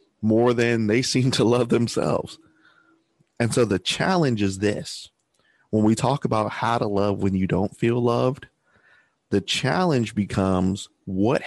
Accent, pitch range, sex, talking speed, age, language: American, 95-120 Hz, male, 150 wpm, 30-49, English